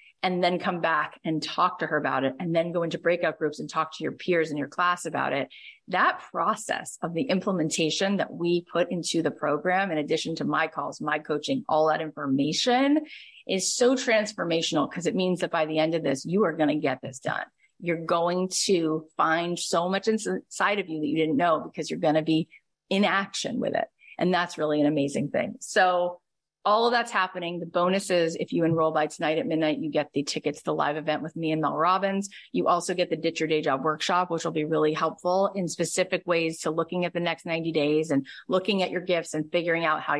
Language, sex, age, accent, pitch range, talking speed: English, female, 30-49, American, 155-185 Hz, 230 wpm